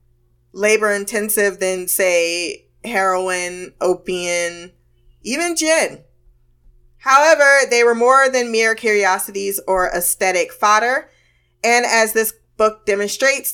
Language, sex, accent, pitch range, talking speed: English, female, American, 180-230 Hz, 100 wpm